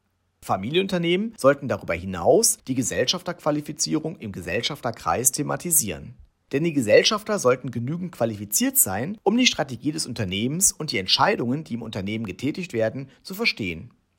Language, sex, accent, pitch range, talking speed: German, male, German, 115-180 Hz, 130 wpm